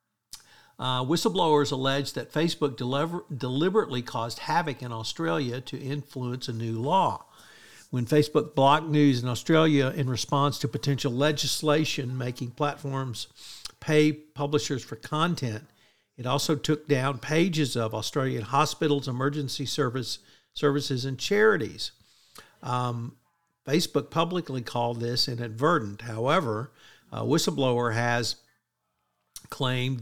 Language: English